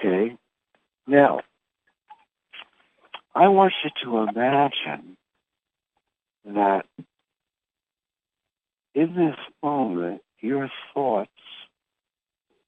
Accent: American